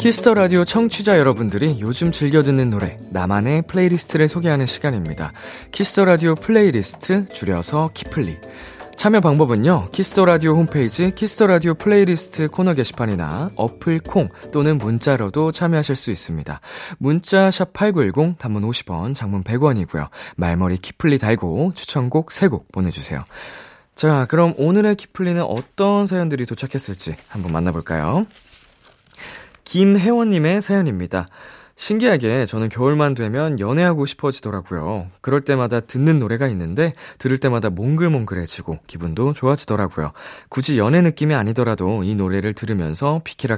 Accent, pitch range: native, 100-165 Hz